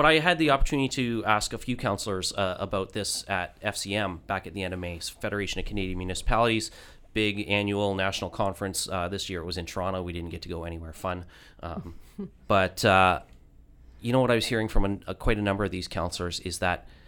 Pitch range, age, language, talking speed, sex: 90-115 Hz, 30-49, English, 210 wpm, male